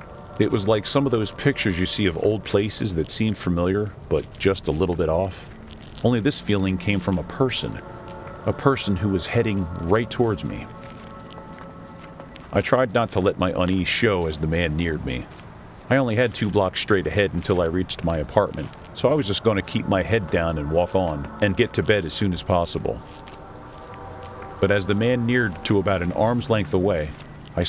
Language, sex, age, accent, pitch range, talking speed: English, male, 40-59, American, 90-115 Hz, 205 wpm